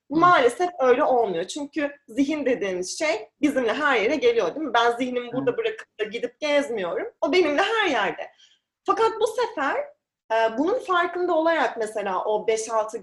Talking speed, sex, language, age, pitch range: 150 wpm, female, Turkish, 30-49, 235-330 Hz